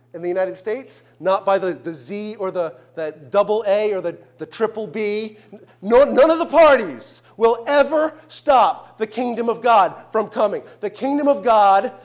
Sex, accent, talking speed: male, American, 185 wpm